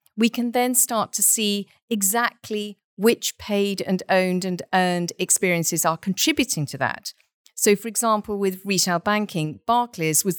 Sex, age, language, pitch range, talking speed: female, 50-69, English, 170-230 Hz, 150 wpm